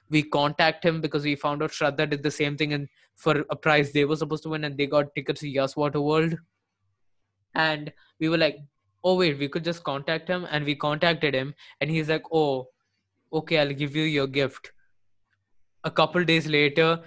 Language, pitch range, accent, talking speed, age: English, 140-160 Hz, Indian, 205 wpm, 20-39